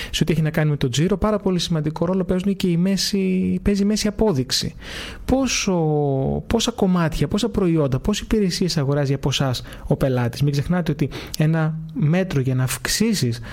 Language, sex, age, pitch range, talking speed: Greek, male, 30-49, 140-190 Hz, 175 wpm